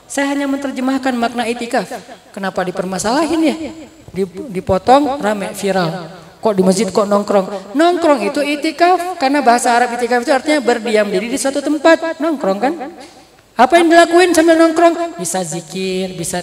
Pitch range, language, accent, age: 205-275 Hz, Indonesian, native, 20-39